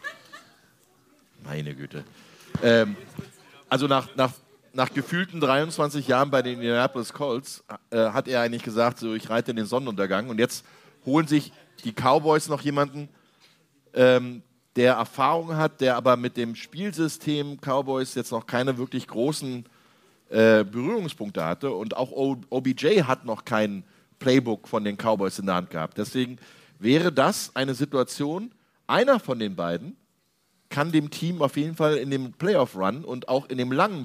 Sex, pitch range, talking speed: male, 110-145 Hz, 155 wpm